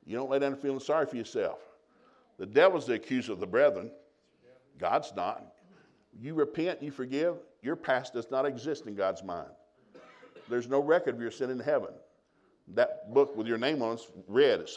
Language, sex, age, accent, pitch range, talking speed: English, male, 60-79, American, 115-170 Hz, 185 wpm